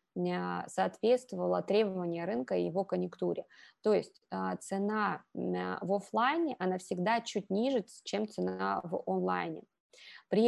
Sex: female